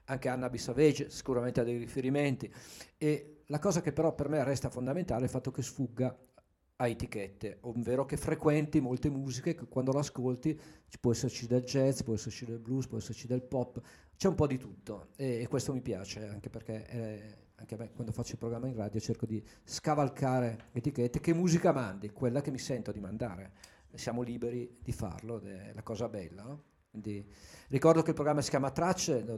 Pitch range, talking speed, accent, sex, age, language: 110-140 Hz, 200 wpm, native, male, 40-59, Italian